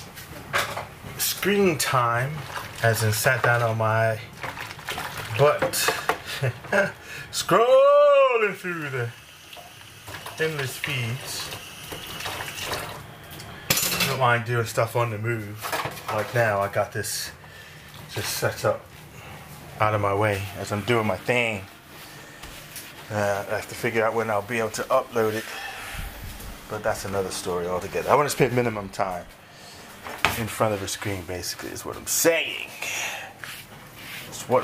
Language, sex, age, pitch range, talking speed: English, male, 30-49, 100-135 Hz, 130 wpm